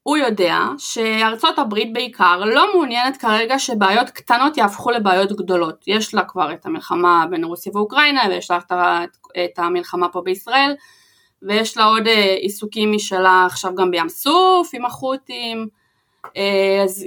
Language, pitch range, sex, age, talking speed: Hebrew, 185-260 Hz, female, 20-39, 135 wpm